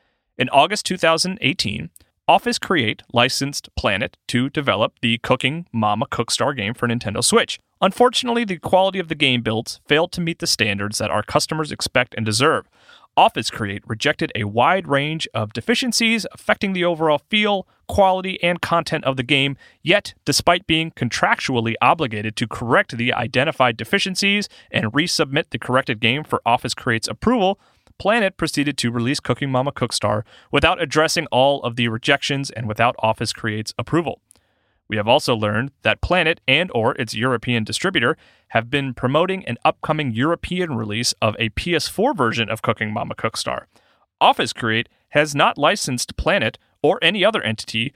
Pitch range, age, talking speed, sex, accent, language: 115-165 Hz, 30-49, 160 wpm, male, American, English